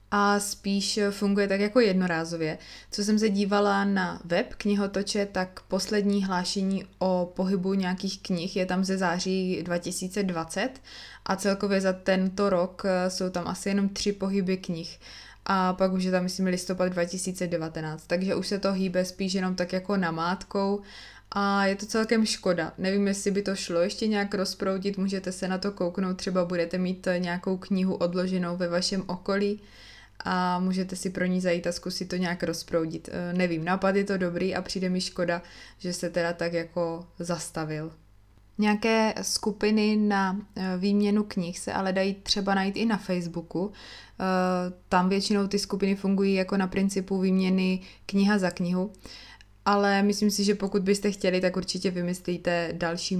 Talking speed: 160 wpm